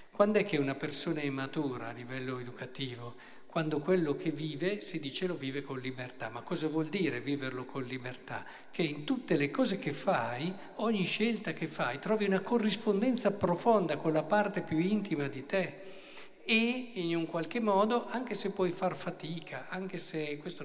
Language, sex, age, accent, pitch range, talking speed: Italian, male, 50-69, native, 145-205 Hz, 180 wpm